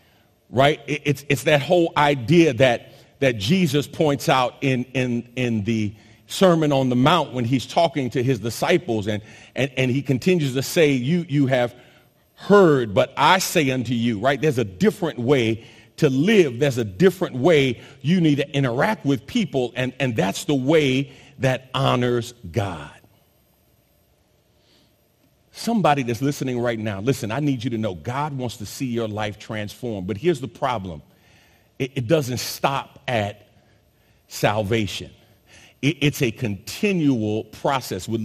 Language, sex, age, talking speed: English, male, 40-59, 155 wpm